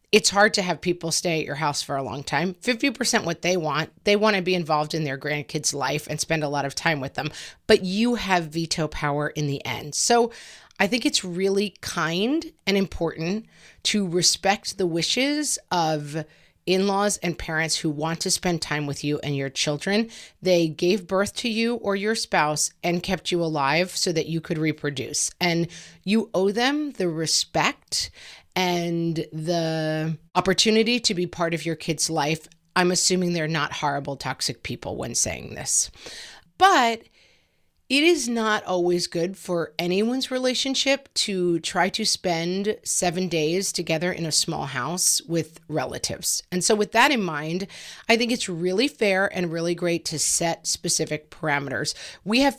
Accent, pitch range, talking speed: American, 160-205 Hz, 175 wpm